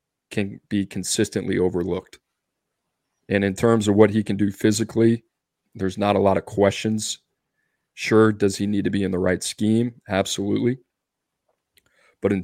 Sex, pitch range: male, 100-105 Hz